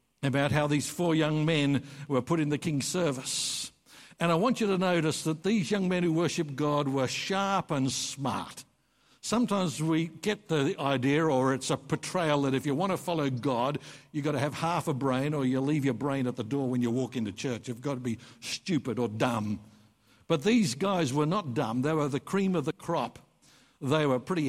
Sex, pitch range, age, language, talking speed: male, 130-165 Hz, 60-79, English, 215 wpm